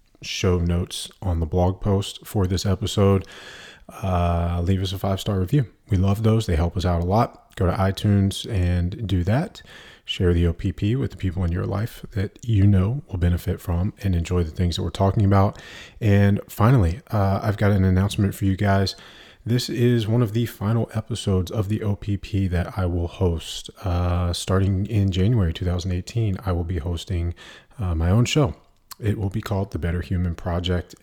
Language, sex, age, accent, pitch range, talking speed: English, male, 30-49, American, 90-100 Hz, 190 wpm